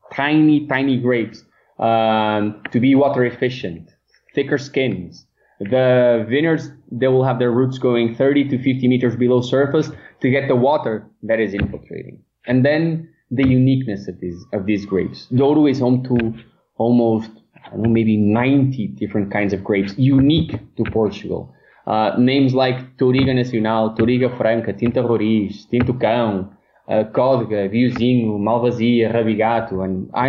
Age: 20-39